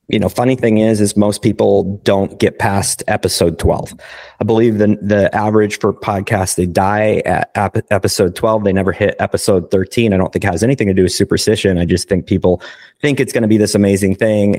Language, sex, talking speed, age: English, male, 220 wpm, 30-49